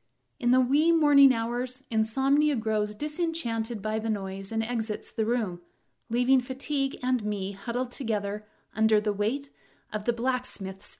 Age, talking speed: 30-49, 145 wpm